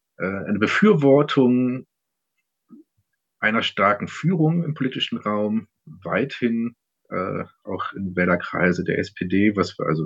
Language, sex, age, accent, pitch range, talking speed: German, male, 40-59, German, 100-145 Hz, 105 wpm